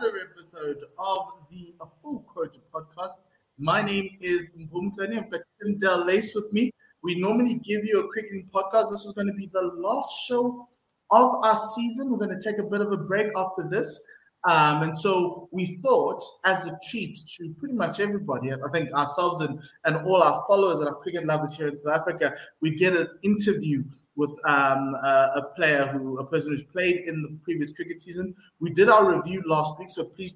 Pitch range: 150-190 Hz